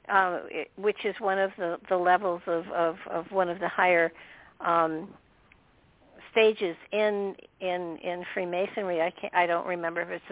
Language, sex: English, female